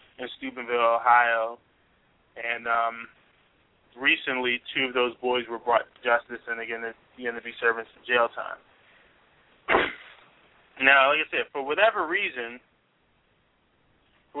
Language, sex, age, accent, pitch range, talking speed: English, male, 20-39, American, 120-135 Hz, 130 wpm